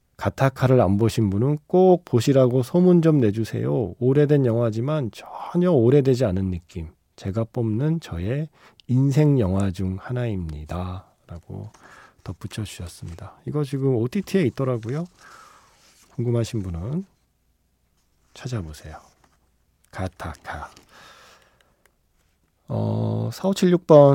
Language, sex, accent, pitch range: Korean, male, native, 95-145 Hz